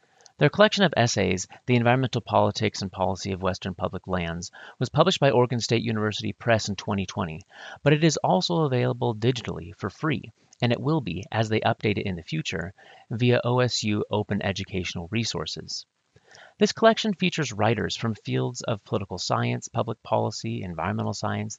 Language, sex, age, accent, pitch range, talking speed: English, male, 30-49, American, 95-125 Hz, 165 wpm